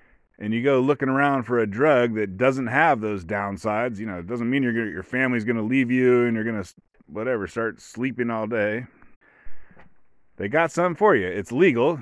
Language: English